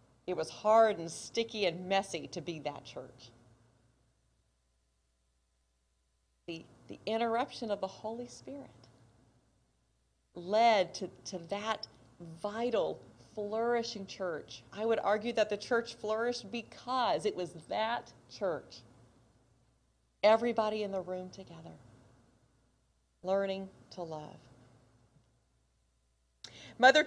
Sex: female